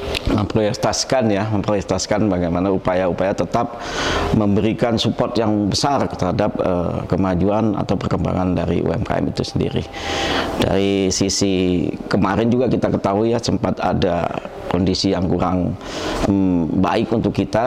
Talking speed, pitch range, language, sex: 115 wpm, 95-110 Hz, Indonesian, male